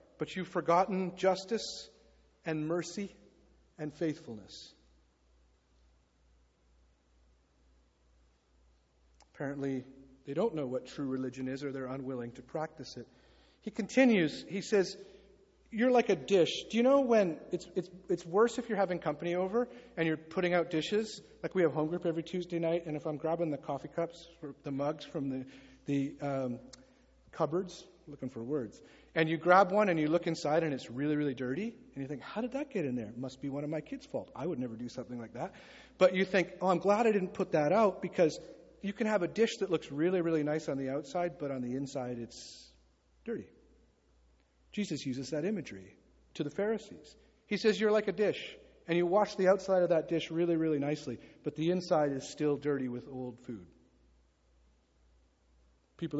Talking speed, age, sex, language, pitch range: 185 wpm, 40-59, male, English, 125-185 Hz